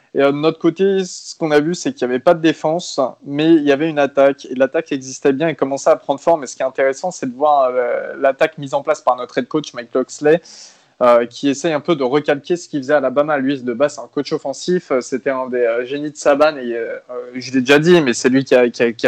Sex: male